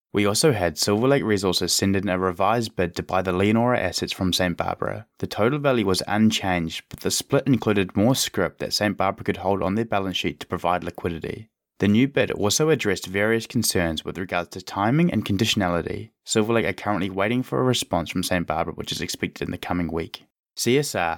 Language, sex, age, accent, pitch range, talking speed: English, male, 20-39, Australian, 90-115 Hz, 210 wpm